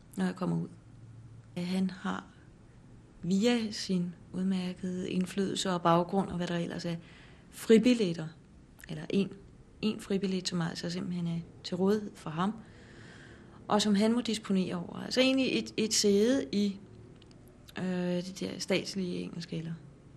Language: Danish